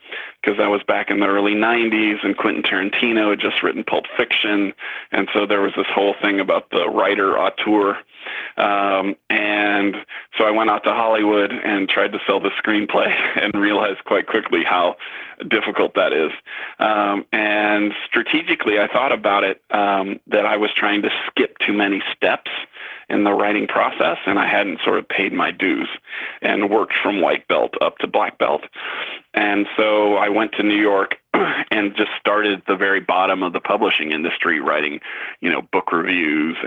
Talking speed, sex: 180 wpm, male